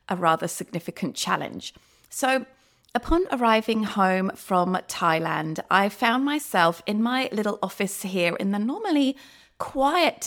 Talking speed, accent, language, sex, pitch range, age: 130 wpm, British, English, female, 175-235 Hz, 30-49